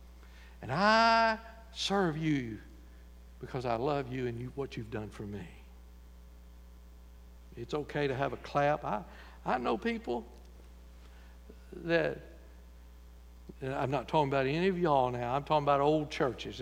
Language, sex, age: English, male, 60-79